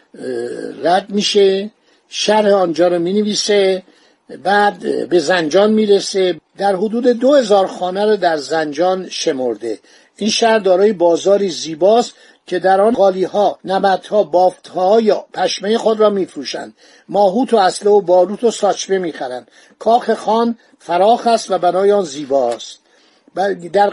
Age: 50-69